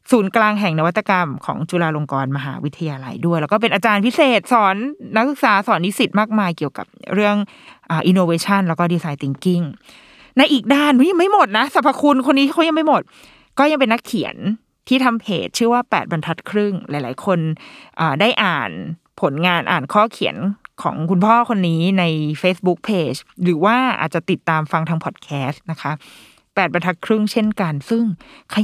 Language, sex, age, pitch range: Thai, female, 20-39, 165-225 Hz